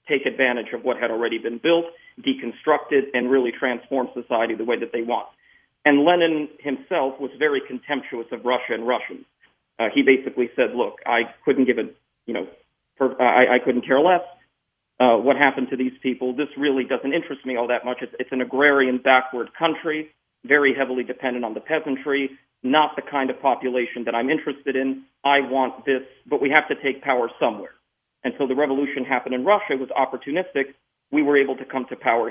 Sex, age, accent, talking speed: male, 40-59, American, 195 wpm